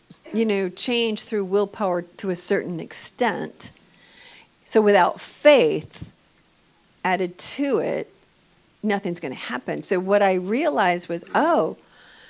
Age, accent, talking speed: 50-69, American, 120 wpm